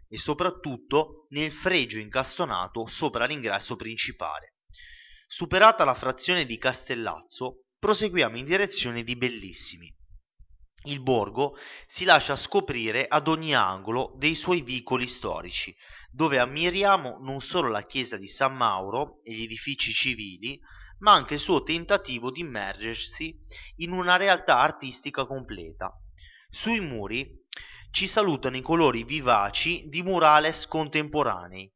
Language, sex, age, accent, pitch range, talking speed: Italian, male, 30-49, native, 115-165 Hz, 125 wpm